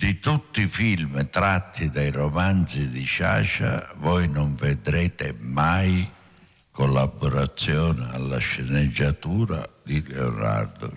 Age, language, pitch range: 60-79, Italian, 75-115 Hz